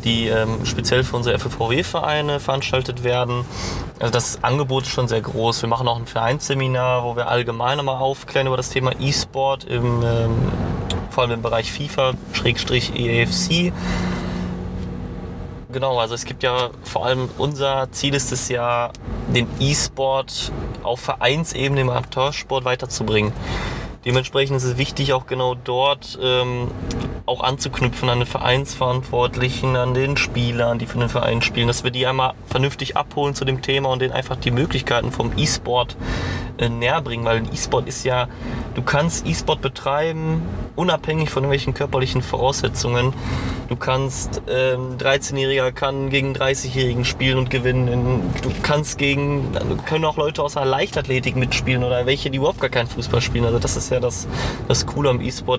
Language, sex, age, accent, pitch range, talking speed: German, male, 20-39, German, 120-135 Hz, 160 wpm